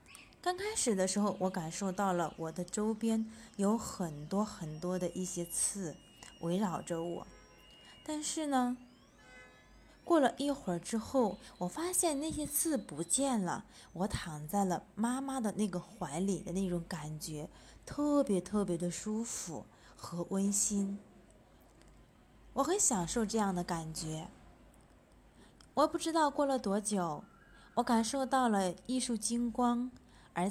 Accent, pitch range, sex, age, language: native, 180-240 Hz, female, 20-39, Chinese